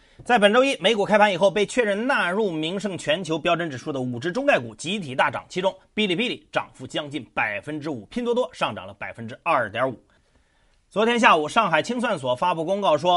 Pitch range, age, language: 165-240 Hz, 30-49, Chinese